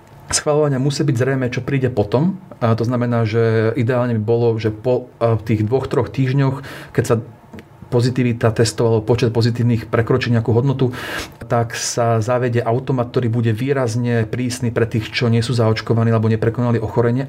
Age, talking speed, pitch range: 40-59, 160 wpm, 115-130 Hz